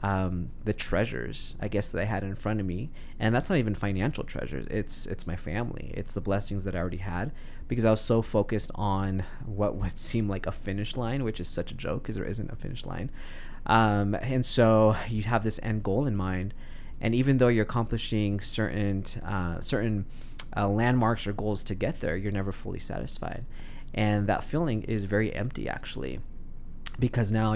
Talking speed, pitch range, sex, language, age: 200 wpm, 100-115 Hz, male, English, 20-39